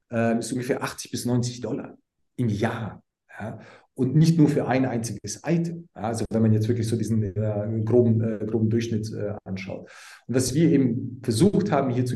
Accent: German